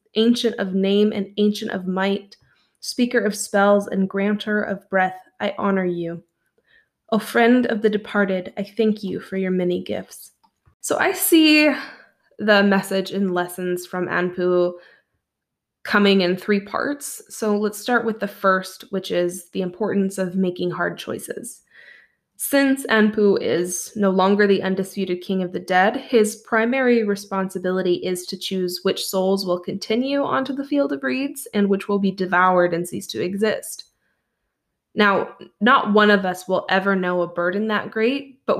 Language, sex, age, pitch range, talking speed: English, female, 20-39, 185-220 Hz, 160 wpm